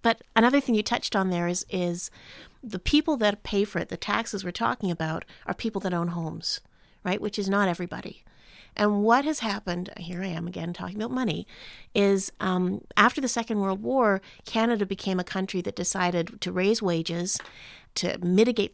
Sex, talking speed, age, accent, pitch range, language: female, 190 wpm, 40-59, American, 180-230 Hz, English